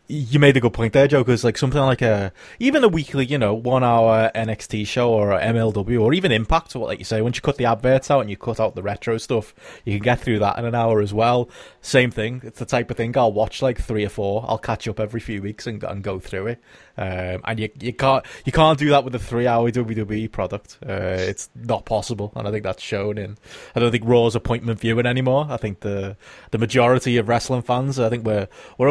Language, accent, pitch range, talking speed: English, British, 105-125 Hz, 245 wpm